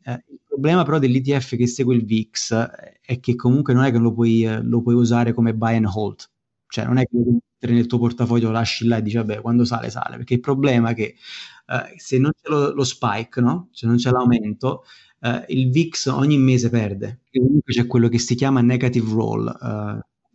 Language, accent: Italian, native